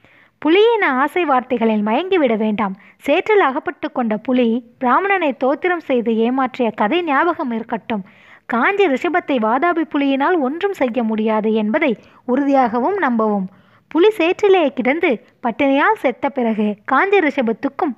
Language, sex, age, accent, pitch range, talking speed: Tamil, female, 20-39, native, 230-310 Hz, 115 wpm